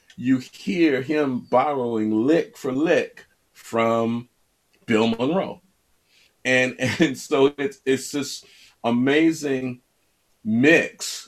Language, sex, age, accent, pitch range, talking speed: English, male, 40-59, American, 95-115 Hz, 95 wpm